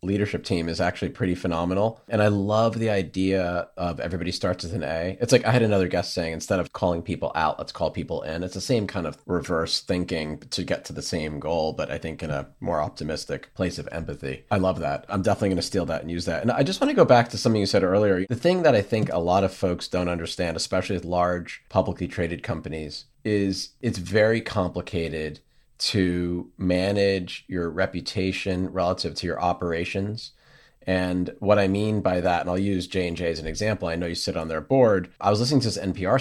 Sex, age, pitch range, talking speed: male, 30-49, 85-100 Hz, 225 wpm